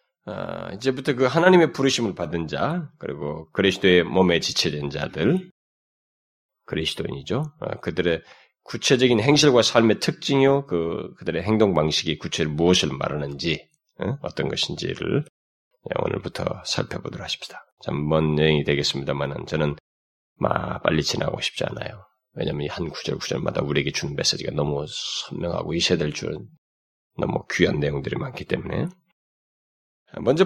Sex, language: male, Korean